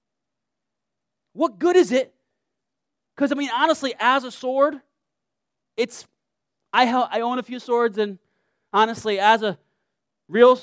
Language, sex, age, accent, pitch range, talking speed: English, male, 30-49, American, 190-260 Hz, 135 wpm